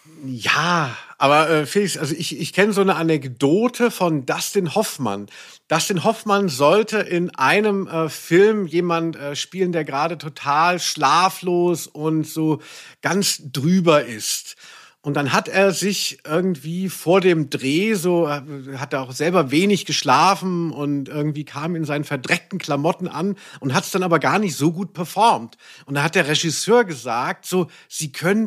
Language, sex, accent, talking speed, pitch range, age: German, male, German, 160 wpm, 145-190 Hz, 50-69